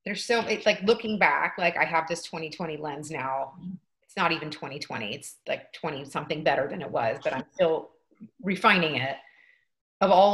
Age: 30-49